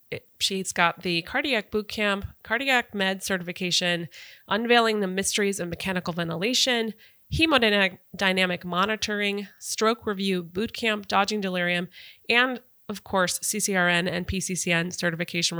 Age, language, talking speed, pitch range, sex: 20-39, English, 110 wpm, 175-215 Hz, female